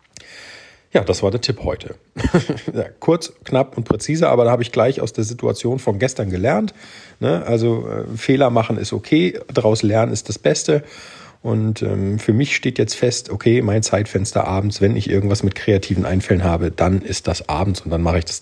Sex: male